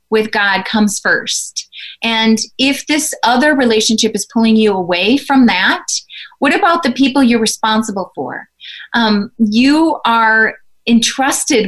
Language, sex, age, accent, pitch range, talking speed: English, female, 30-49, American, 205-250 Hz, 135 wpm